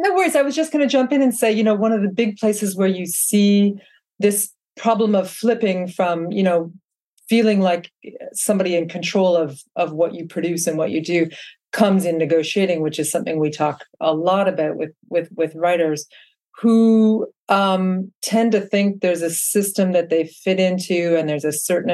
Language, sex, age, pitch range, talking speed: English, female, 40-59, 160-205 Hz, 195 wpm